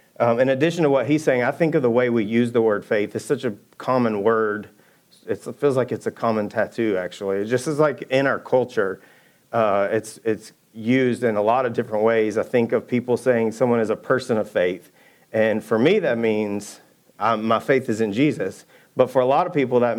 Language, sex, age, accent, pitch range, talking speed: English, male, 40-59, American, 110-130 Hz, 230 wpm